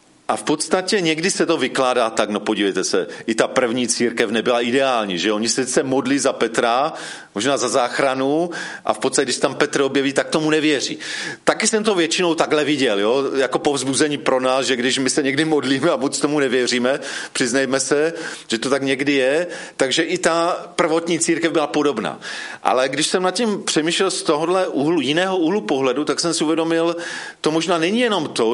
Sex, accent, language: male, native, Czech